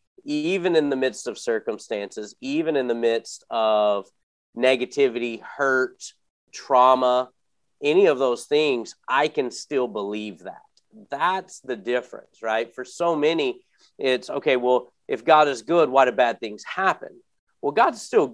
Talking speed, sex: 145 wpm, male